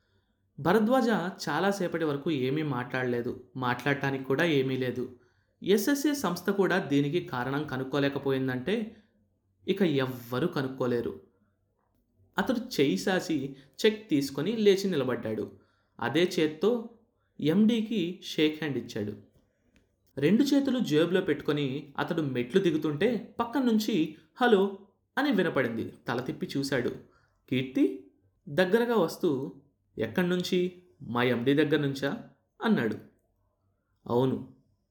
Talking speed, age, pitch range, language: 95 wpm, 20-39, 120-190 Hz, Telugu